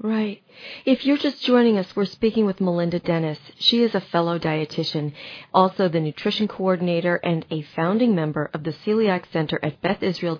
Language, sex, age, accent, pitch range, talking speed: English, female, 40-59, American, 165-215 Hz, 180 wpm